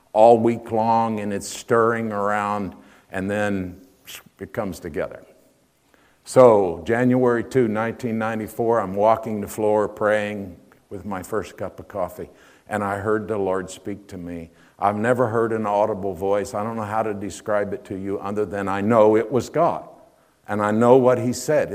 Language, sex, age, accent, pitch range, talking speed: English, male, 50-69, American, 100-120 Hz, 175 wpm